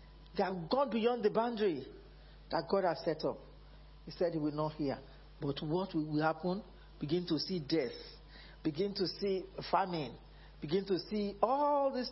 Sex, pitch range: male, 145-185 Hz